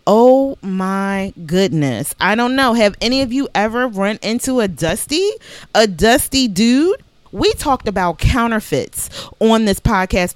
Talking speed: 145 wpm